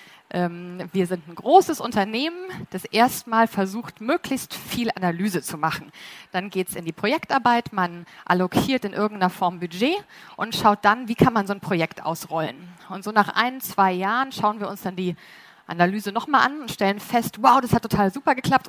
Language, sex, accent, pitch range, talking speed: German, female, German, 180-235 Hz, 185 wpm